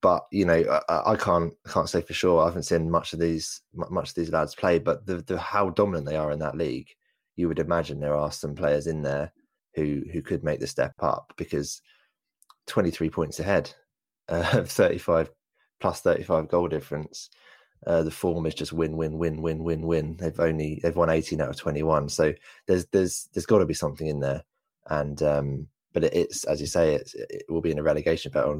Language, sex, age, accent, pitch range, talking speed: English, male, 20-39, British, 75-85 Hz, 215 wpm